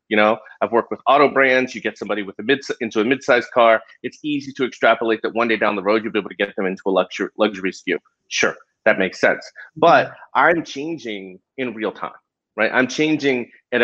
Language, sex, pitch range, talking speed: English, male, 115-155 Hz, 225 wpm